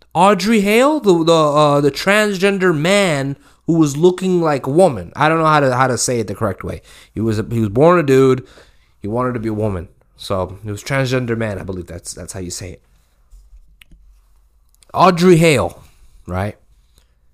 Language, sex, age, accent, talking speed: English, male, 20-39, American, 195 wpm